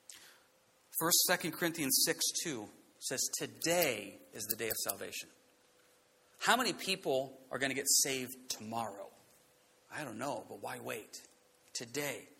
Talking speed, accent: 125 wpm, American